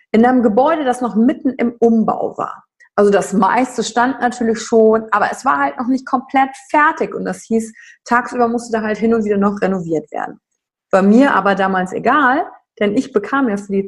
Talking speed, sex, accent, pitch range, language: 205 wpm, female, German, 190-240 Hz, German